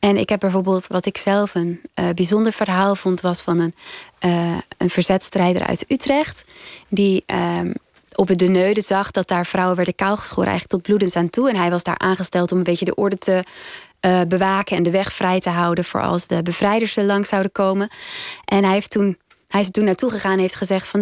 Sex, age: female, 20-39